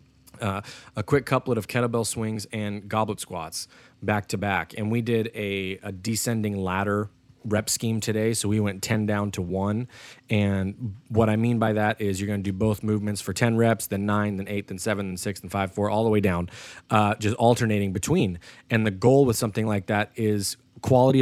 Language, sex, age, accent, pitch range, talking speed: English, male, 20-39, American, 100-115 Hz, 210 wpm